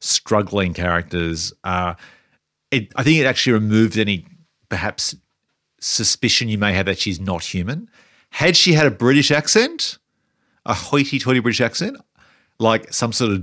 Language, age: English, 40-59